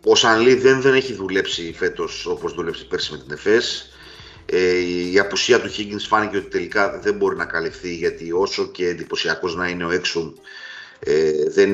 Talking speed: 180 wpm